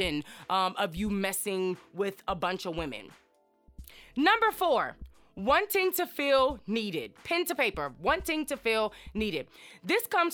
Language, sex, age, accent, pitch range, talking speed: English, female, 20-39, American, 205-280 Hz, 140 wpm